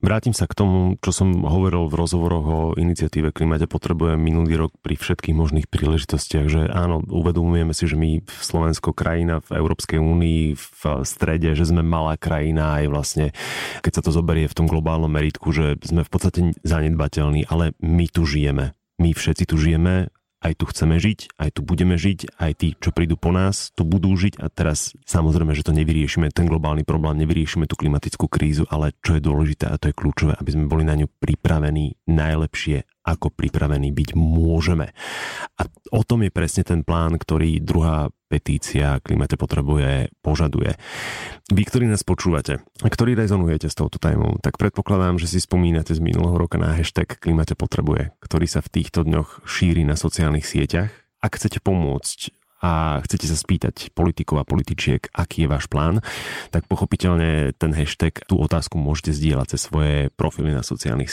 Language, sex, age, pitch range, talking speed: Slovak, male, 30-49, 75-90 Hz, 175 wpm